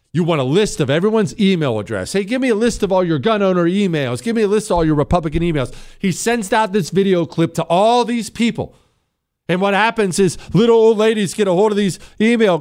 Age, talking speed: 40-59, 245 wpm